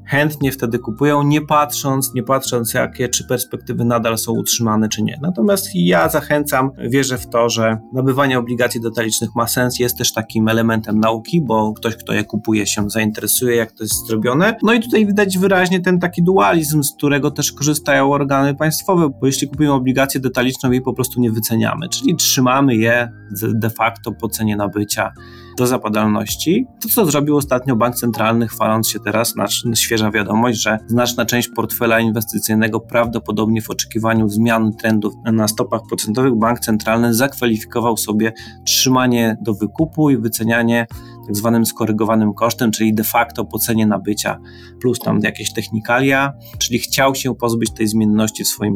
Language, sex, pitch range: Polish, male, 110-135 Hz